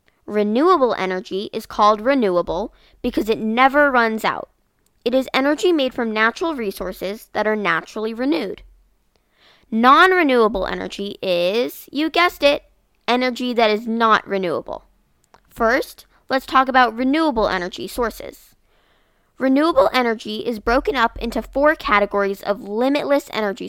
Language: English